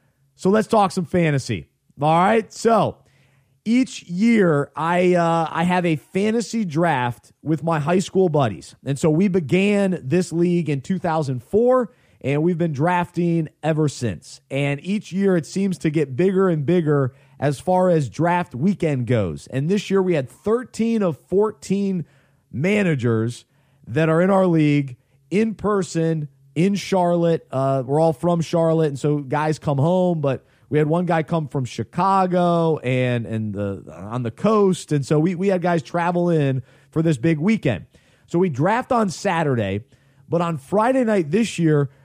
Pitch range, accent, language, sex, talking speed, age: 140-190 Hz, American, English, male, 165 wpm, 30-49